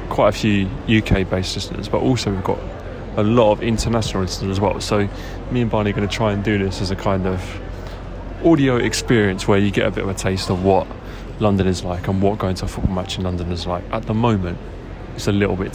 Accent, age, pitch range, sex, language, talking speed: British, 20-39, 90-105 Hz, male, English, 245 wpm